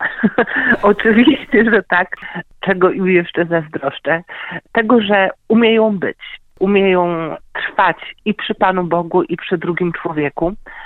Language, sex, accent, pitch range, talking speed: Polish, male, native, 170-210 Hz, 120 wpm